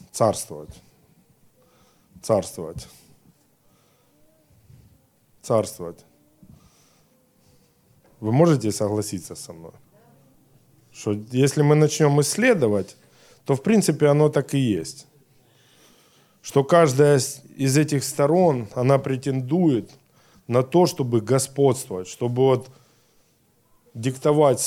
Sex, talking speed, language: male, 80 wpm, Russian